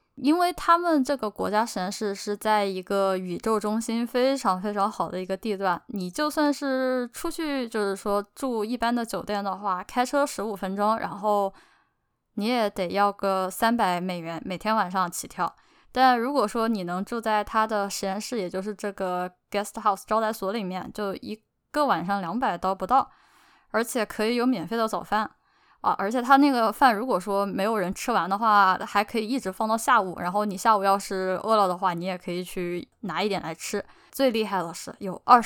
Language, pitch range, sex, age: Chinese, 190-235 Hz, female, 10-29